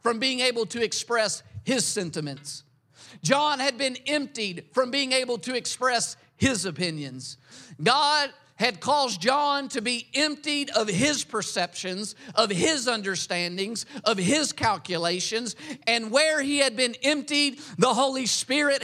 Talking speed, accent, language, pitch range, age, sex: 135 wpm, American, English, 150-235 Hz, 50-69, male